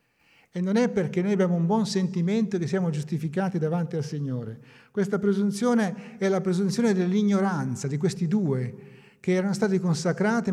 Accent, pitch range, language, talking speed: native, 140-195 Hz, Italian, 160 wpm